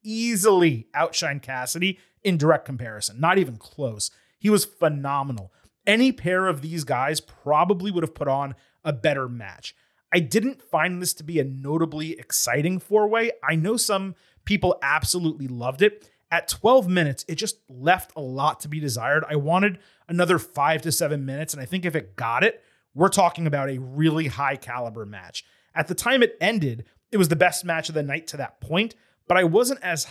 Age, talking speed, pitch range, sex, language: 30-49, 190 wpm, 135-175 Hz, male, English